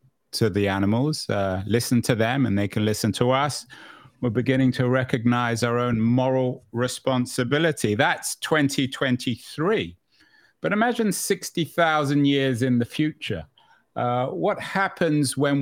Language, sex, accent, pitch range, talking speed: English, male, British, 120-140 Hz, 130 wpm